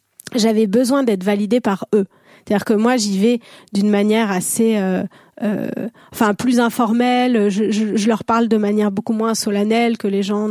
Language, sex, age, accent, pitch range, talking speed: French, female, 30-49, French, 205-240 Hz, 185 wpm